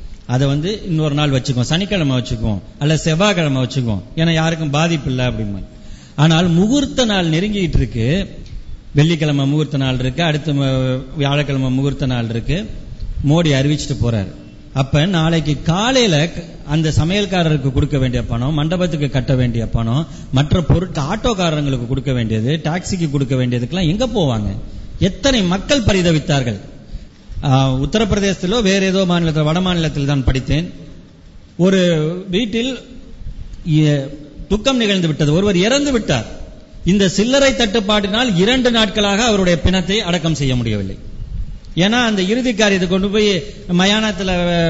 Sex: male